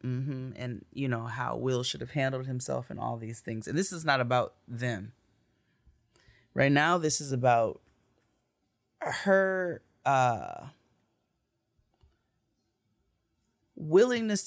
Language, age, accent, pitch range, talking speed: English, 20-39, American, 110-135 Hz, 120 wpm